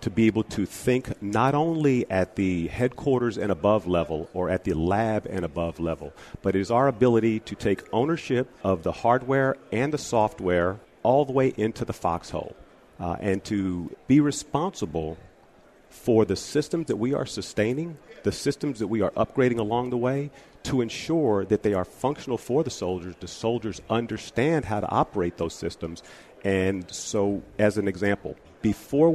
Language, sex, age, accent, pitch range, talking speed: English, male, 40-59, American, 95-125 Hz, 175 wpm